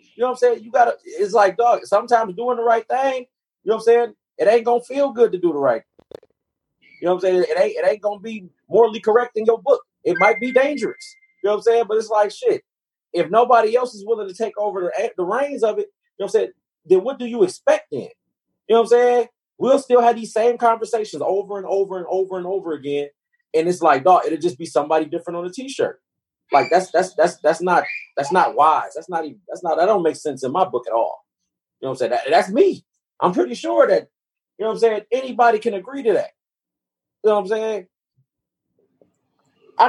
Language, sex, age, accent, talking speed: English, male, 30-49, American, 250 wpm